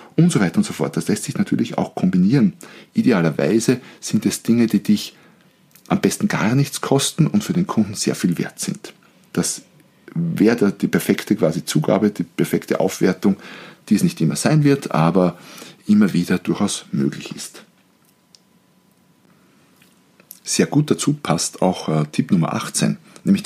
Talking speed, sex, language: 155 wpm, male, German